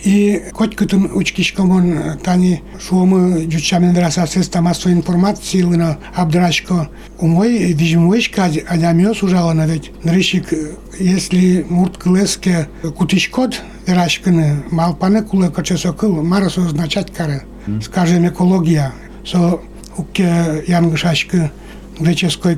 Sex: male